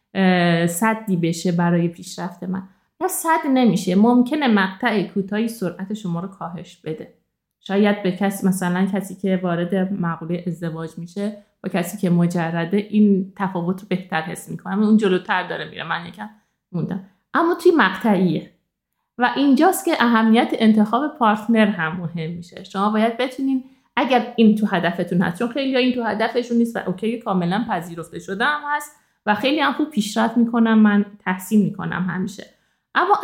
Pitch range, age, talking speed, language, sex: 180-235 Hz, 50-69, 150 wpm, Persian, female